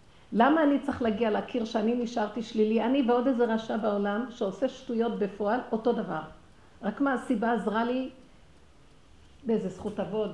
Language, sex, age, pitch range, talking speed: Hebrew, female, 50-69, 190-240 Hz, 150 wpm